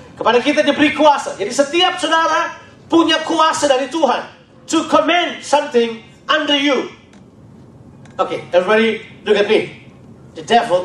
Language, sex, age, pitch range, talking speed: Indonesian, male, 40-59, 225-320 Hz, 125 wpm